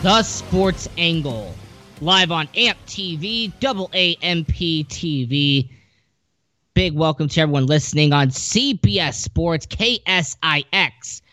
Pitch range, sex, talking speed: 125-170 Hz, male, 105 wpm